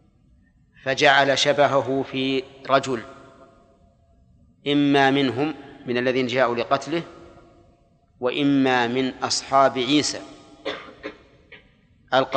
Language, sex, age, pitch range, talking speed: Arabic, male, 40-59, 125-145 Hz, 75 wpm